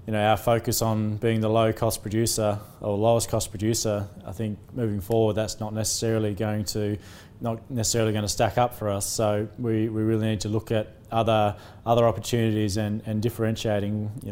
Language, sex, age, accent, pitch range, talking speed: English, male, 20-39, Australian, 105-115 Hz, 185 wpm